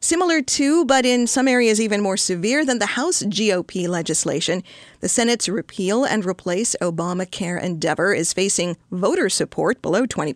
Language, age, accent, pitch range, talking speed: English, 50-69, American, 180-230 Hz, 155 wpm